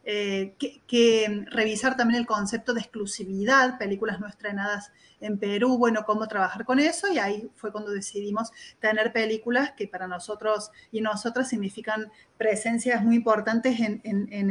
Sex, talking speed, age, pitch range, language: female, 155 wpm, 30-49, 205-235 Hz, Spanish